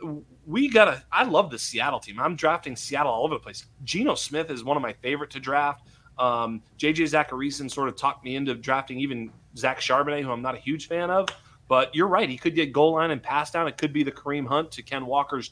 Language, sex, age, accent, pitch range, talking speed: English, male, 30-49, American, 130-165 Hz, 245 wpm